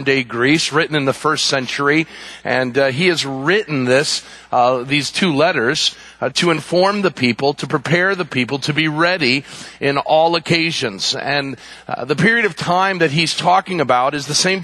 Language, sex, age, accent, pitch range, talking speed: English, male, 40-59, American, 140-175 Hz, 185 wpm